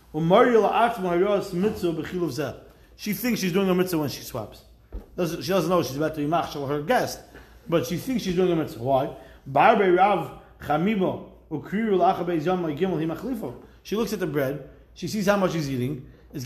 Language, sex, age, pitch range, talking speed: English, male, 30-49, 155-205 Hz, 140 wpm